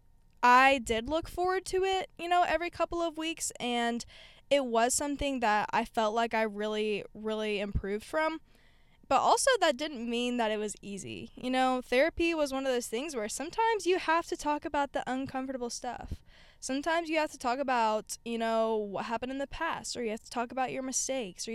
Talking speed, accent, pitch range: 205 wpm, American, 225-285 Hz